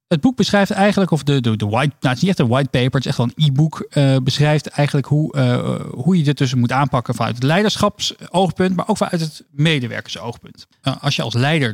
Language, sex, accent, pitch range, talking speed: Dutch, male, Dutch, 120-160 Hz, 245 wpm